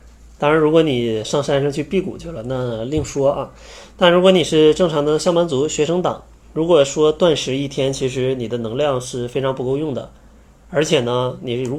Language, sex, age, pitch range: Chinese, male, 20-39, 115-150 Hz